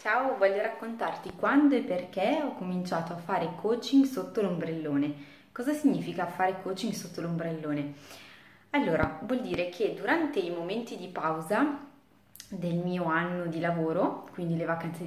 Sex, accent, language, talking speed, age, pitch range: female, native, Italian, 145 wpm, 20-39, 175-240 Hz